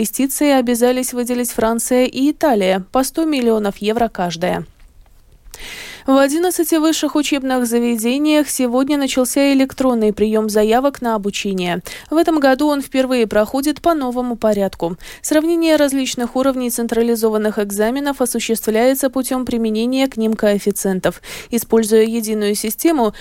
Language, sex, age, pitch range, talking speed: Russian, female, 20-39, 215-280 Hz, 120 wpm